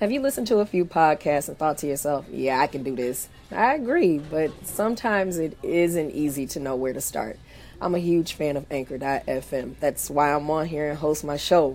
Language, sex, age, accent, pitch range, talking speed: English, female, 30-49, American, 145-190 Hz, 220 wpm